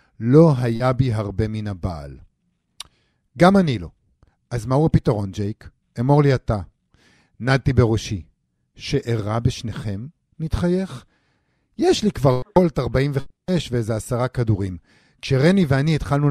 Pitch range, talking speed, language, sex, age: 110-145 Hz, 120 wpm, Hebrew, male, 50-69